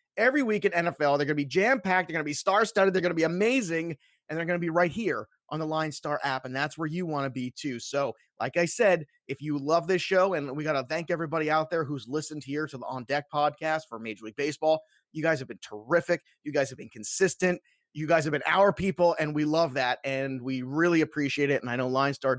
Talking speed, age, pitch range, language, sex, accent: 270 wpm, 30-49, 135-170 Hz, English, male, American